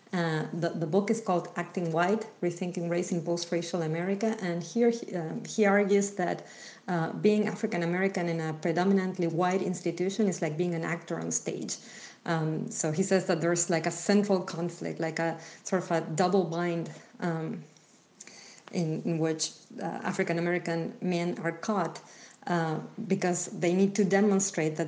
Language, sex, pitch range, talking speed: English, female, 170-195 Hz, 165 wpm